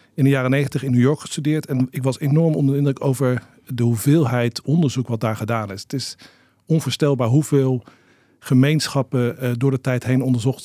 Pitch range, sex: 120-145 Hz, male